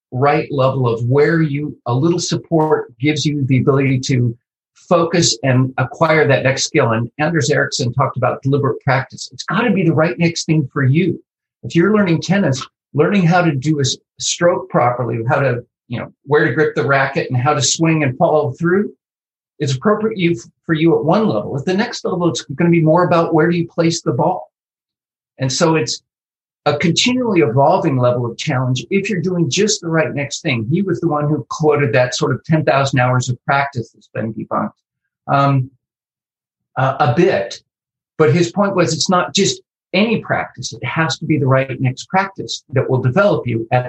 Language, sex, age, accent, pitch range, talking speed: English, male, 50-69, American, 130-170 Hz, 200 wpm